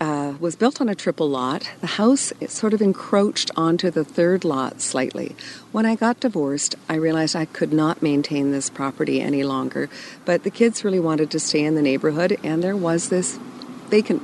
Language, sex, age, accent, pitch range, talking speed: English, female, 40-59, American, 145-195 Hz, 195 wpm